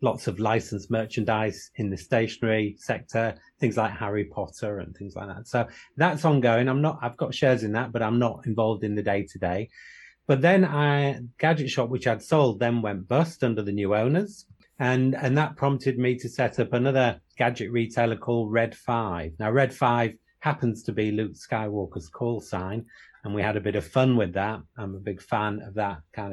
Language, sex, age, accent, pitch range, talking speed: English, male, 30-49, British, 110-135 Hz, 205 wpm